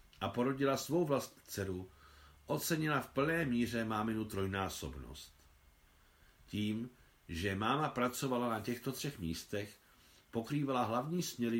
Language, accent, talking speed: Czech, native, 115 wpm